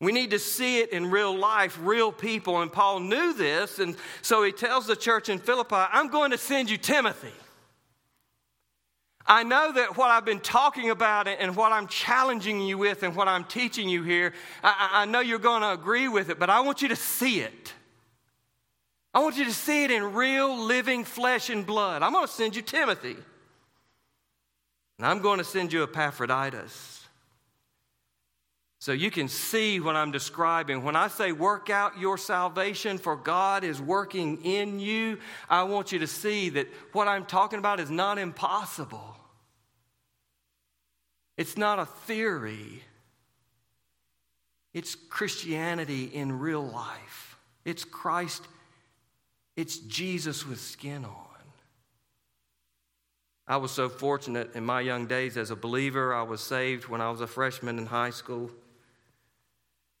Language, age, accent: English, 40-59, American